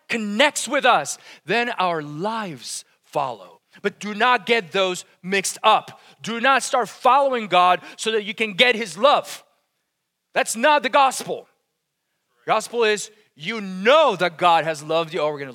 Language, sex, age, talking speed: English, male, 30-49, 160 wpm